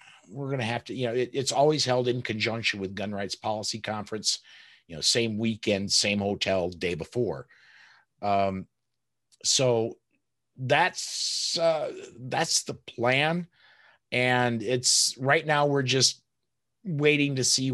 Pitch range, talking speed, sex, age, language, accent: 105-130 Hz, 140 wpm, male, 50-69, English, American